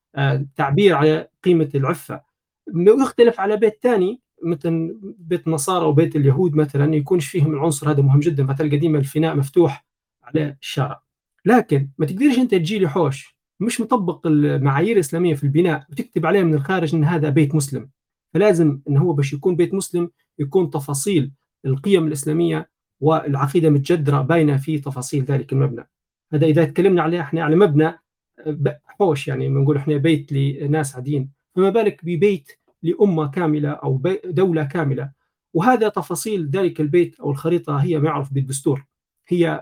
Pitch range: 145-175 Hz